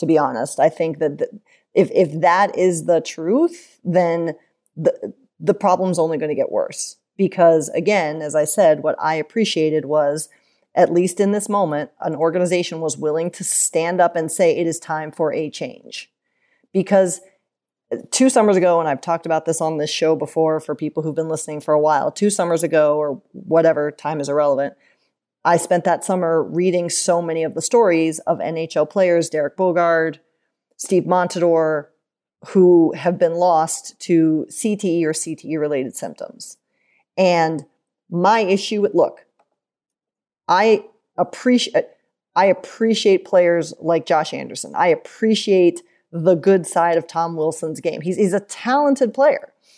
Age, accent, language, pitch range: 30-49, American, English, 160-195 Hz